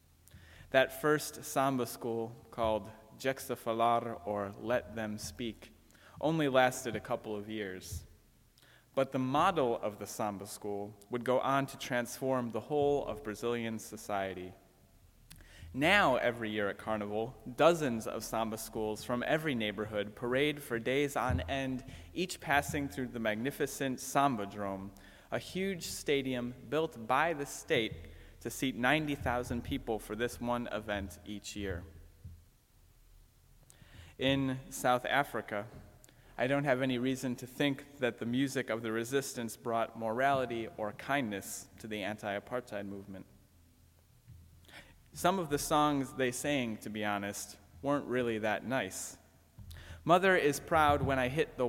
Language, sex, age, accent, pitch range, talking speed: English, male, 30-49, American, 100-135 Hz, 135 wpm